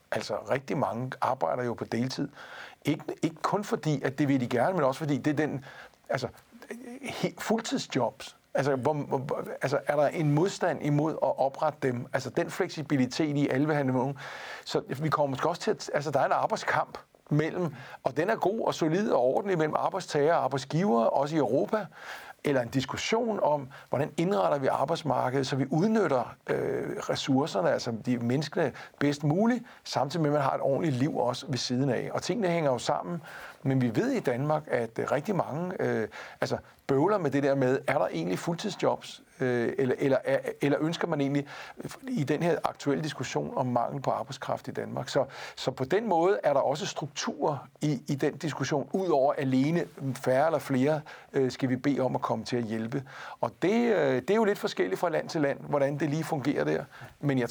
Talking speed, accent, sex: 200 wpm, native, male